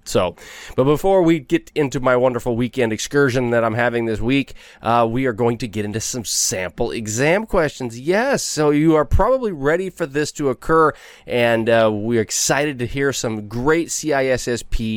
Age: 20-39